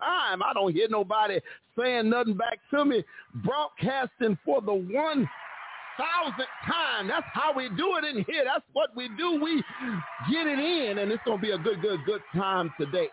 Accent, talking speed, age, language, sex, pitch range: American, 185 wpm, 40-59, English, male, 130-210 Hz